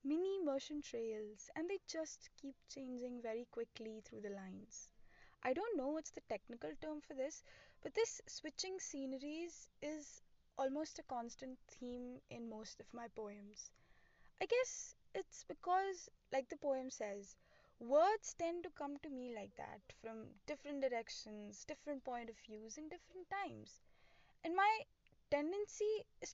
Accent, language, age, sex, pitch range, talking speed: Indian, English, 10-29, female, 235-355 Hz, 150 wpm